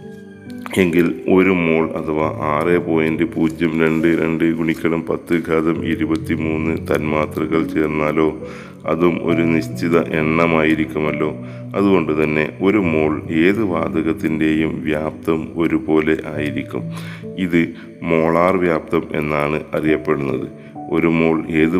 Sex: male